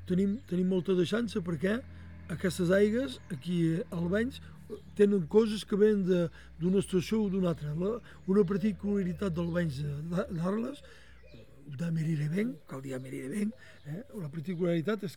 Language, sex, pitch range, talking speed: French, male, 170-210 Hz, 120 wpm